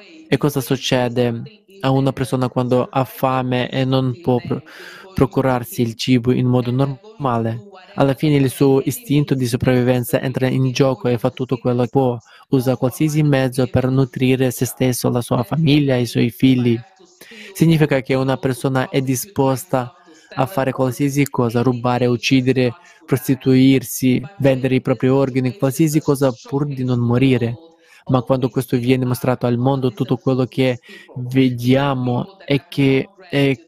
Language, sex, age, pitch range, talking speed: Italian, male, 20-39, 125-140 Hz, 150 wpm